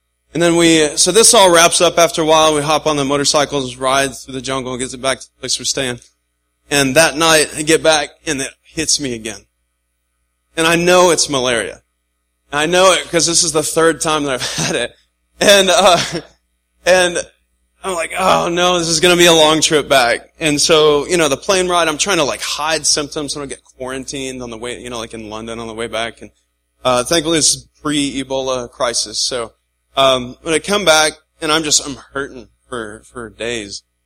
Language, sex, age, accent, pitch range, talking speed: English, male, 20-39, American, 115-155 Hz, 220 wpm